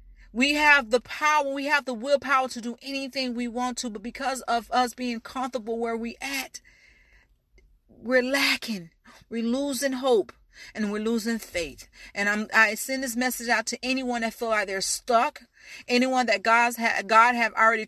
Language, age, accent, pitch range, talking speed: English, 40-59, American, 200-255 Hz, 180 wpm